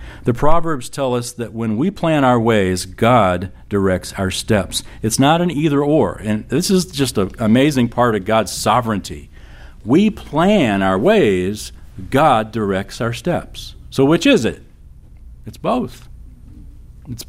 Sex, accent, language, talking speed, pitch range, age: male, American, English, 150 wpm, 90-130 Hz, 50-69